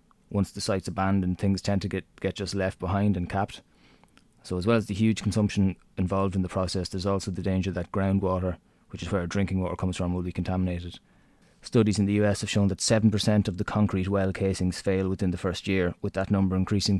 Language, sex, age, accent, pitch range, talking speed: English, male, 20-39, Irish, 90-100 Hz, 220 wpm